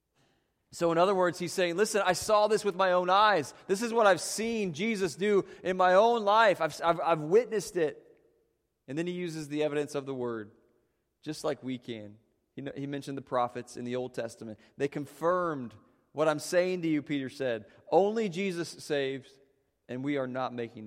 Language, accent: English, American